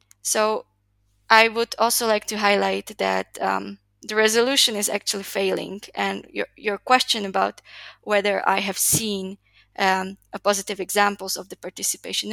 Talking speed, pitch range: 145 wpm, 195-215 Hz